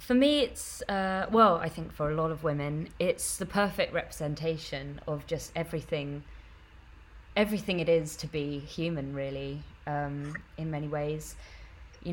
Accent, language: British, English